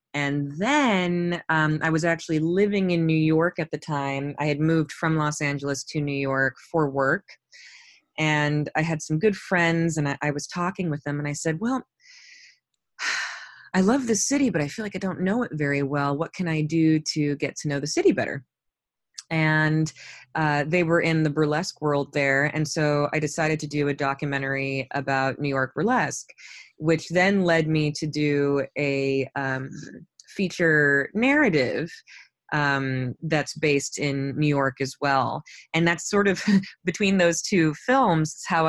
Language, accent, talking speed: English, American, 180 wpm